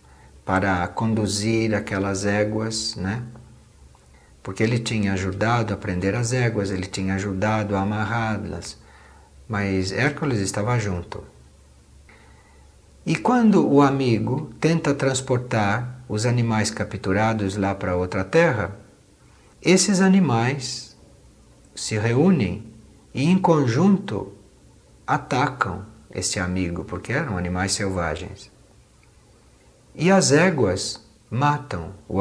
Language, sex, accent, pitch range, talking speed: Portuguese, male, Brazilian, 95-130 Hz, 100 wpm